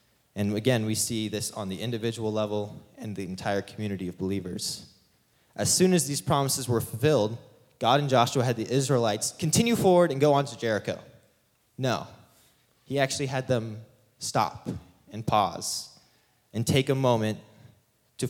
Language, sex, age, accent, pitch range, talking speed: English, male, 20-39, American, 105-130 Hz, 155 wpm